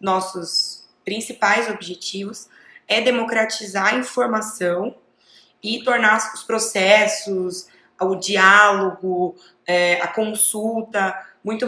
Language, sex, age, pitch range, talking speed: Portuguese, female, 20-39, 180-215 Hz, 80 wpm